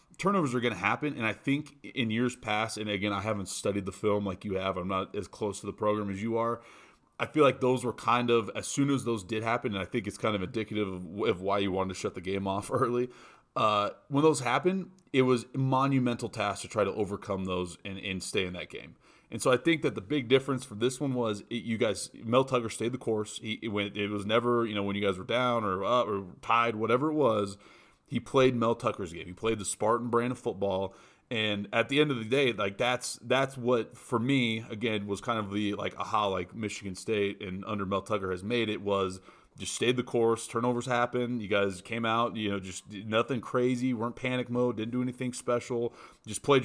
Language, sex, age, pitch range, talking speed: English, male, 30-49, 100-125 Hz, 245 wpm